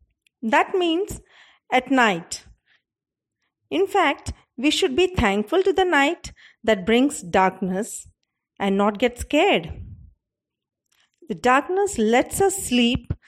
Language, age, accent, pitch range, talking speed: English, 40-59, Indian, 210-320 Hz, 115 wpm